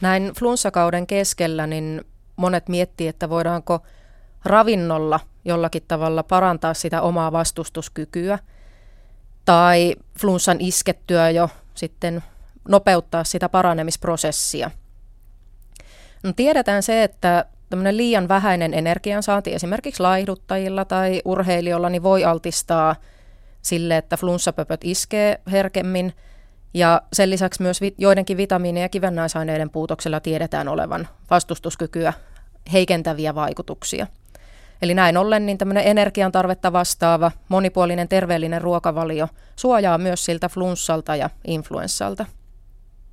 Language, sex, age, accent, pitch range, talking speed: Finnish, female, 30-49, native, 160-195 Hz, 95 wpm